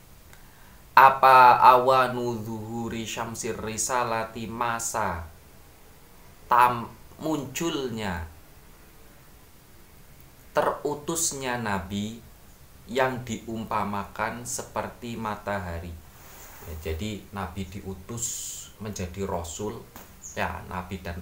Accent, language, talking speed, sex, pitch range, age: native, Indonesian, 65 wpm, male, 85-115 Hz, 30-49